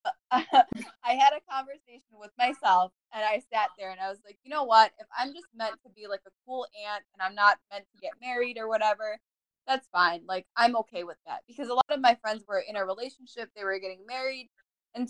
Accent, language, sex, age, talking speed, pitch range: American, English, female, 20-39, 230 wpm, 185-235 Hz